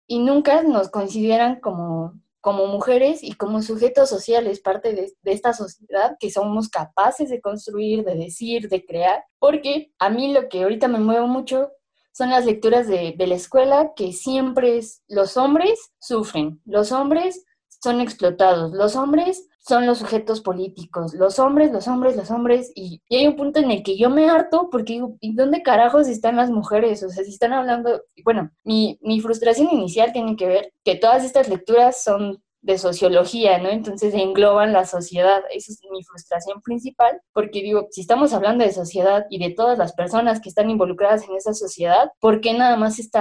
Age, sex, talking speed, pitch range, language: 20-39, female, 185 wpm, 195-265 Hz, Spanish